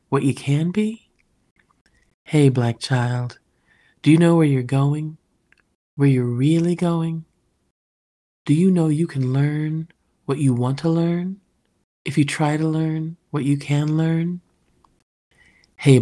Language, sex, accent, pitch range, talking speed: English, male, American, 115-150 Hz, 140 wpm